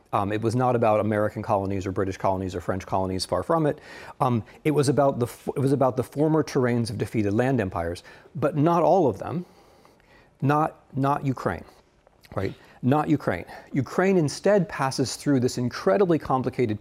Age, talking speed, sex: 40-59, 175 wpm, male